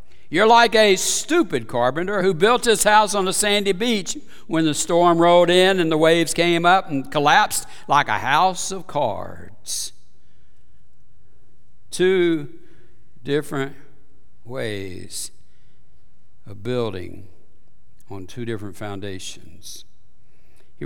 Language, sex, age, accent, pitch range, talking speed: English, male, 60-79, American, 110-165 Hz, 115 wpm